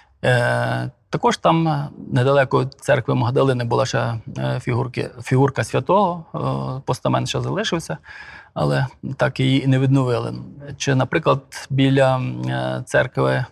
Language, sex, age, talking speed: Ukrainian, male, 20-39, 105 wpm